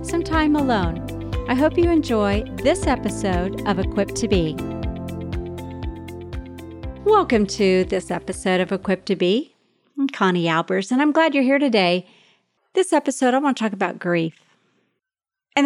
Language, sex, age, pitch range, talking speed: English, female, 40-59, 190-250 Hz, 150 wpm